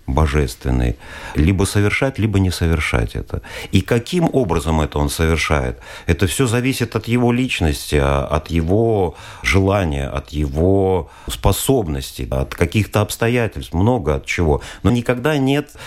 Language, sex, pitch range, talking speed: Russian, male, 80-110 Hz, 130 wpm